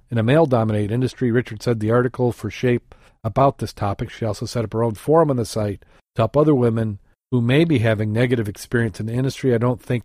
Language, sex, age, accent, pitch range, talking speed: English, male, 40-59, American, 110-125 Hz, 235 wpm